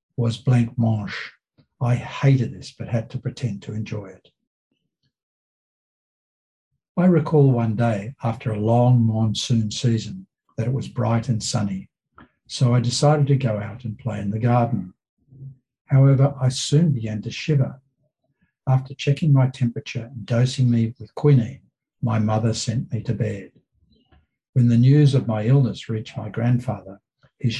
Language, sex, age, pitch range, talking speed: English, male, 60-79, 110-135 Hz, 150 wpm